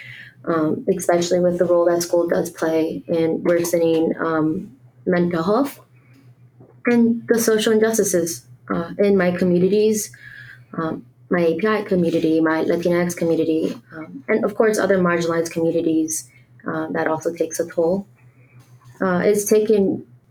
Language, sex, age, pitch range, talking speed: English, female, 20-39, 165-195 Hz, 135 wpm